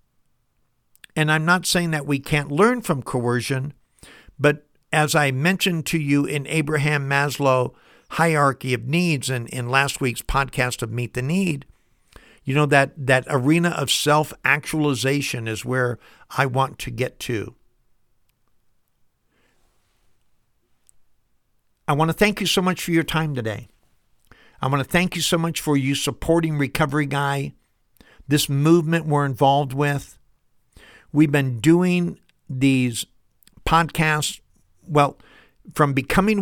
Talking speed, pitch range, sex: 135 wpm, 125-150 Hz, male